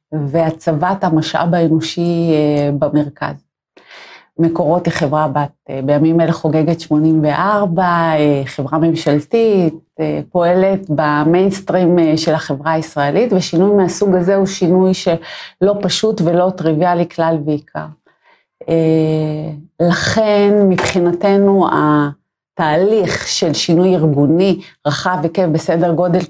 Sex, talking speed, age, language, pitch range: female, 105 wpm, 30-49, English, 155-185 Hz